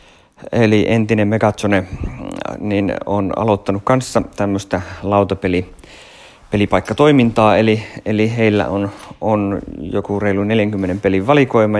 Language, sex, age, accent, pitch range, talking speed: Finnish, male, 30-49, native, 95-110 Hz, 95 wpm